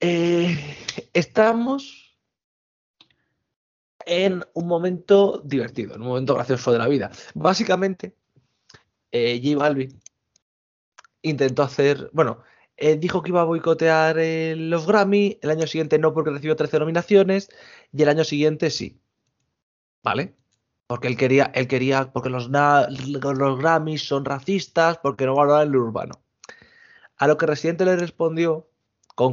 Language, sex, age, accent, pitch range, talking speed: Spanish, male, 20-39, Spanish, 125-165 Hz, 140 wpm